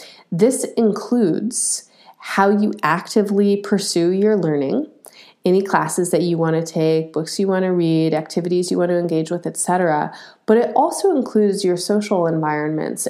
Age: 30-49